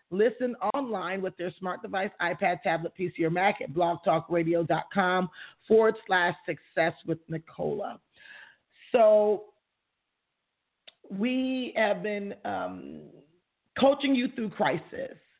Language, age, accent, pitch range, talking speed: English, 40-59, American, 170-225 Hz, 105 wpm